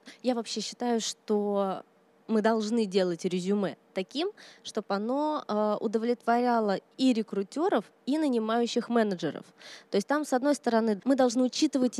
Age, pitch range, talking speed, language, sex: 20-39, 210-260 Hz, 130 wpm, Russian, female